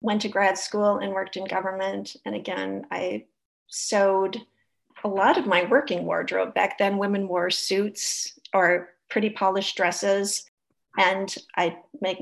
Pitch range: 190-220 Hz